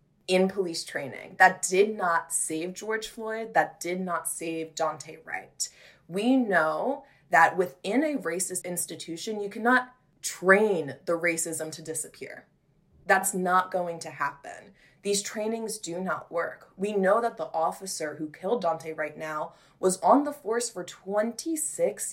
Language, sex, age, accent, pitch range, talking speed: English, female, 20-39, American, 170-225 Hz, 150 wpm